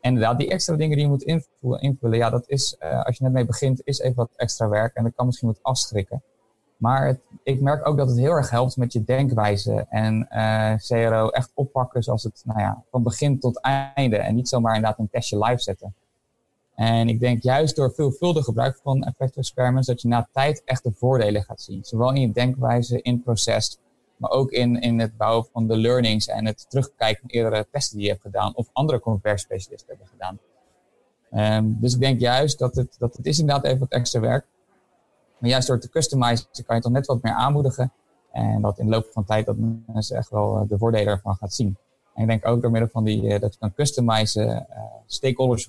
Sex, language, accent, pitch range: male, Dutch, Dutch, 110-130 Hz